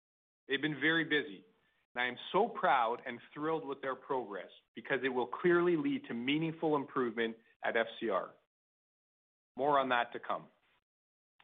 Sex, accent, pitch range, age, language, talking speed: male, American, 125-160 Hz, 40-59, English, 150 wpm